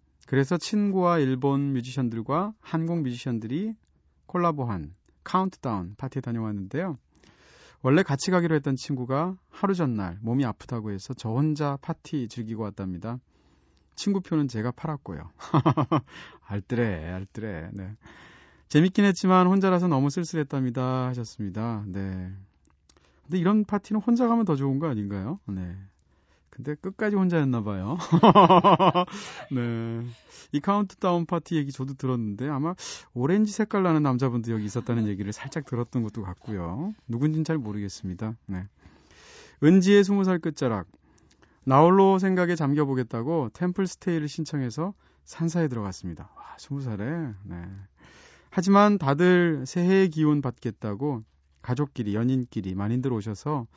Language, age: Korean, 30-49